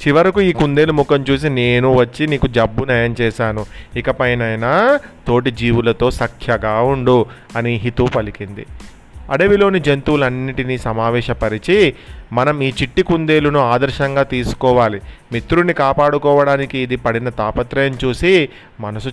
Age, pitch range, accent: 30-49, 115-140 Hz, native